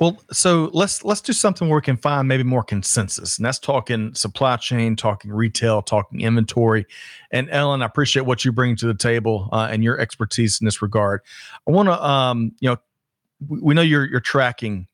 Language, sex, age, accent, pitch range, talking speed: English, male, 40-59, American, 110-135 Hz, 205 wpm